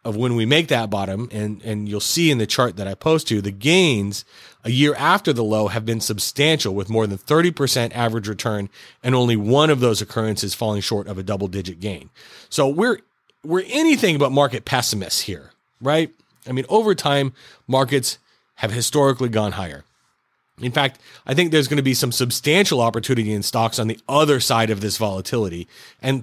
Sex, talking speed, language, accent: male, 195 wpm, English, American